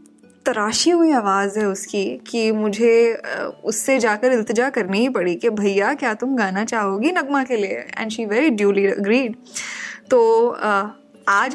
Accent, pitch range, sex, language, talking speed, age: native, 210-270 Hz, female, Hindi, 150 wpm, 10-29